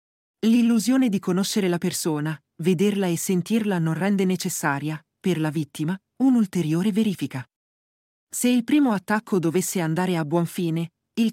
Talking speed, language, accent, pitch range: 140 wpm, Italian, native, 170-210 Hz